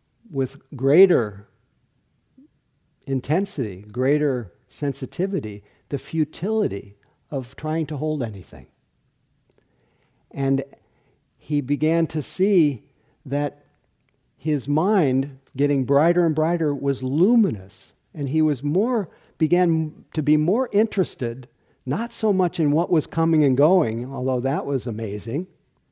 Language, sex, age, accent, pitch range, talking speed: English, male, 50-69, American, 130-180 Hz, 110 wpm